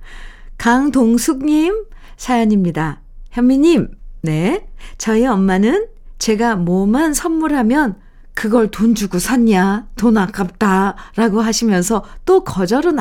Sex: female